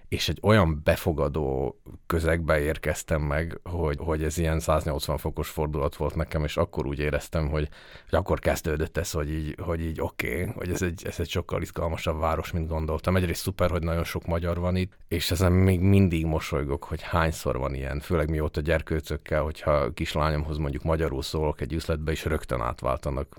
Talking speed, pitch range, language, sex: 190 wpm, 75-85 Hz, Hungarian, male